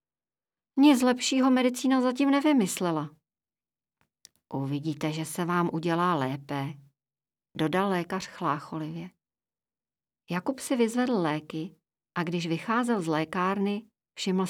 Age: 40-59